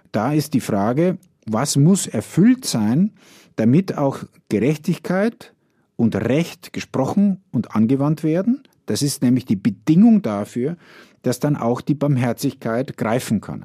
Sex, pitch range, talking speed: male, 115-160 Hz, 130 wpm